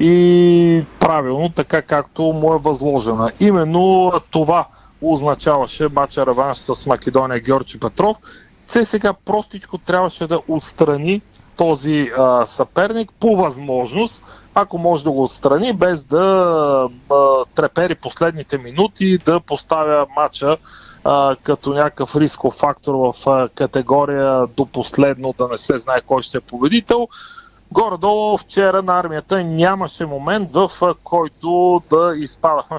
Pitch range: 140-180 Hz